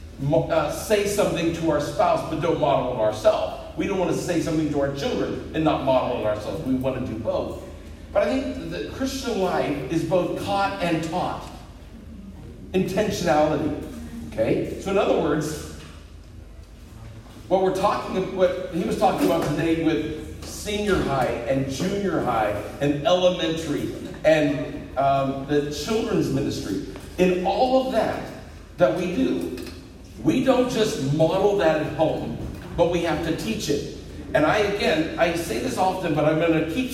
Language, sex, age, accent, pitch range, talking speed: English, male, 50-69, American, 135-185 Hz, 165 wpm